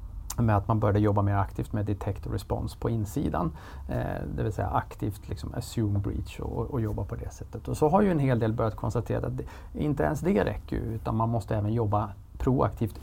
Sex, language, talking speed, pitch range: male, Swedish, 220 wpm, 100-120 Hz